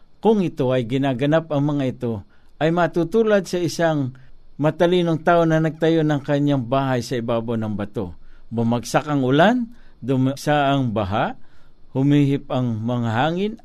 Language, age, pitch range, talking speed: Filipino, 50-69, 120-150 Hz, 140 wpm